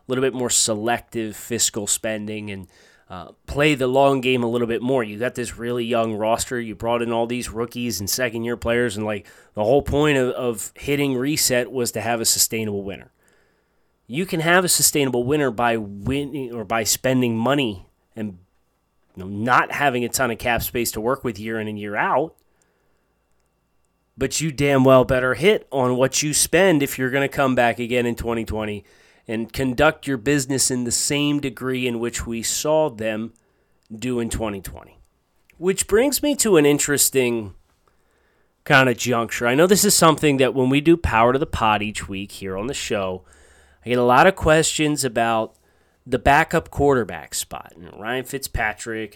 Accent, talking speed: American, 190 wpm